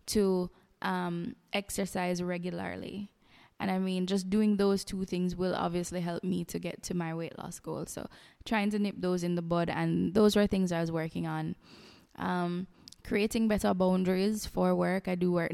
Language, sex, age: English, female, 10-29